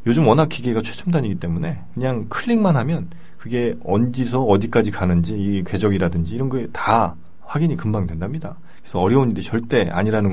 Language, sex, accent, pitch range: Korean, male, native, 95-140 Hz